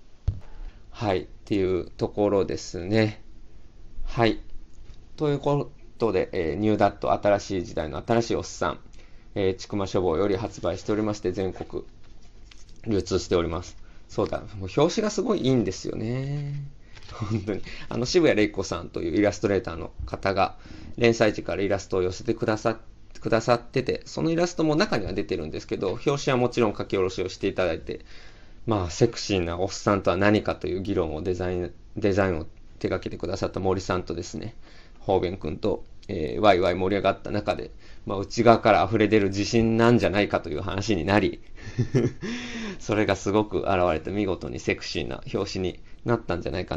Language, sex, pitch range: Japanese, male, 90-115 Hz